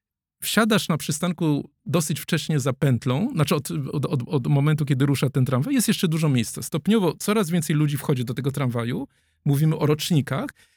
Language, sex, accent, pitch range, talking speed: Polish, male, native, 140-195 Hz, 180 wpm